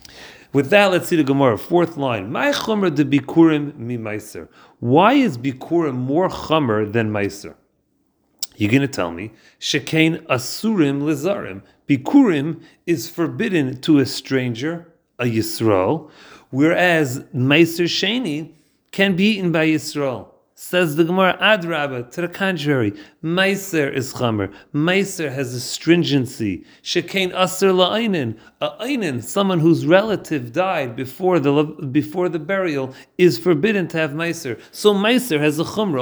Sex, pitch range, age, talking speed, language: male, 130-175 Hz, 40-59, 130 wpm, English